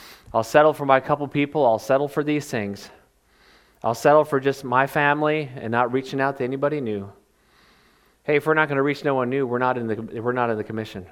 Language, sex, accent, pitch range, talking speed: English, male, American, 115-145 Hz, 230 wpm